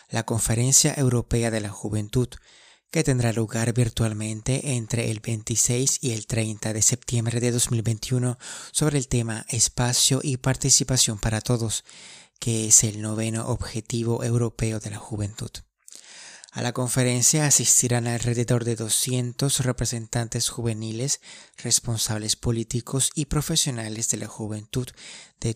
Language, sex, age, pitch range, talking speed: Spanish, male, 30-49, 115-130 Hz, 125 wpm